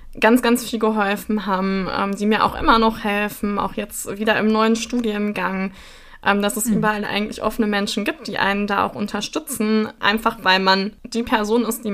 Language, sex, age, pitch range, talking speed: German, female, 20-39, 200-230 Hz, 190 wpm